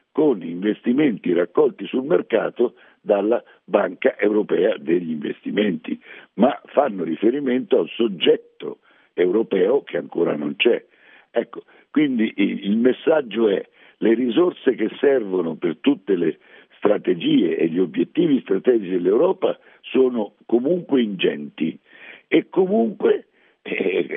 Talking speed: 110 wpm